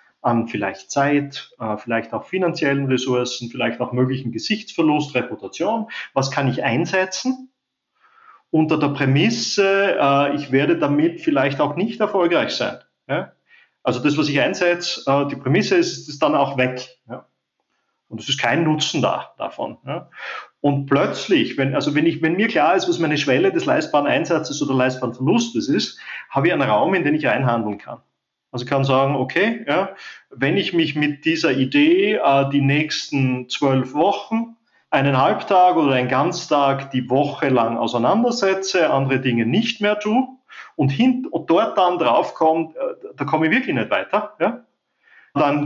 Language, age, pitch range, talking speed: German, 30-49, 130-210 Hz, 160 wpm